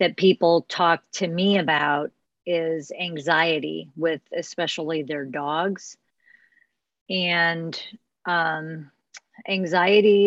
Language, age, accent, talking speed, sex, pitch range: English, 40-59, American, 90 wpm, female, 155-180 Hz